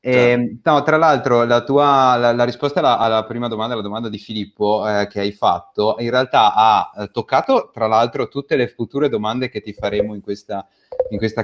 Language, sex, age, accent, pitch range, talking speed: Italian, male, 30-49, native, 110-130 Hz, 200 wpm